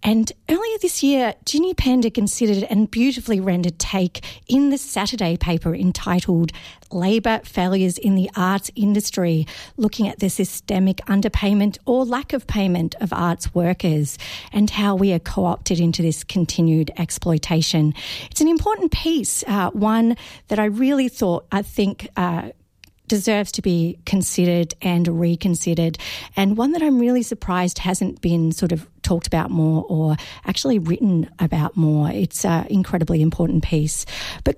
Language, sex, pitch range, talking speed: English, female, 175-220 Hz, 150 wpm